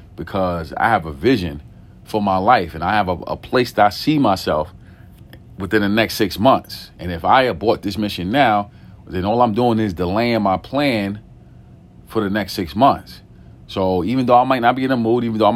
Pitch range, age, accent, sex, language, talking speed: 100-120 Hz, 40-59, American, male, English, 215 wpm